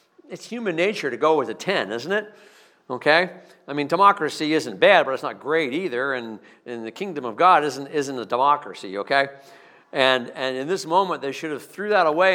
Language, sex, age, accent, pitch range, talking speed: English, male, 50-69, American, 120-175 Hz, 210 wpm